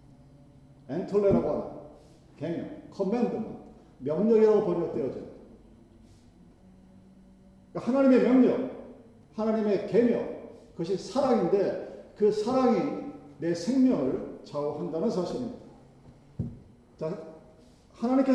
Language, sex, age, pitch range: Korean, male, 40-59, 150-230 Hz